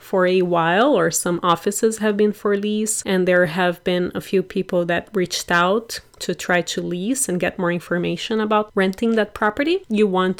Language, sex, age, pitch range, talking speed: English, female, 30-49, 180-215 Hz, 195 wpm